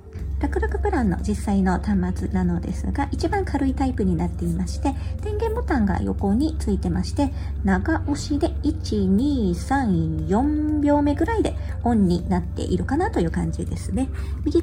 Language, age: Japanese, 40-59